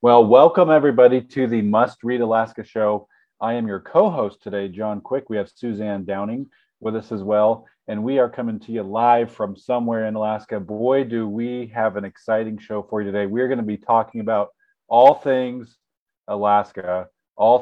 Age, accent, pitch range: 40-59, American, 105-120 Hz